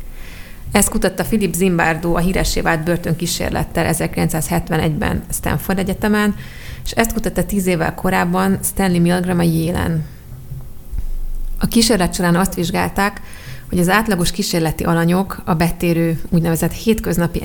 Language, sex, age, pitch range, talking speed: Hungarian, female, 30-49, 165-190 Hz, 120 wpm